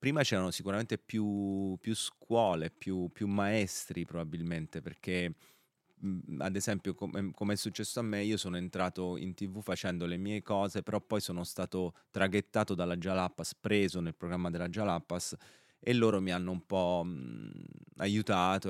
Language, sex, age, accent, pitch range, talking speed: Italian, male, 30-49, native, 85-100 Hz, 150 wpm